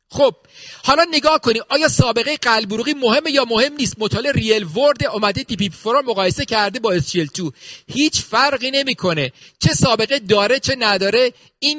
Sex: male